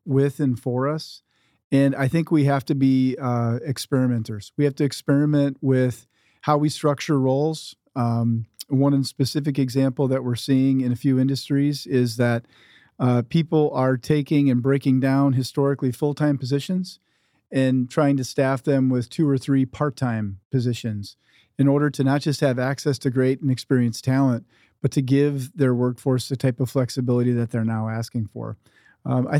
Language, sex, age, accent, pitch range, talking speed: English, male, 40-59, American, 125-145 Hz, 170 wpm